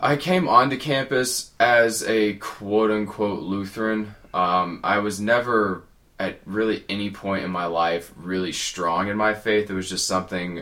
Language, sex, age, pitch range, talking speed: English, male, 20-39, 85-100 Hz, 160 wpm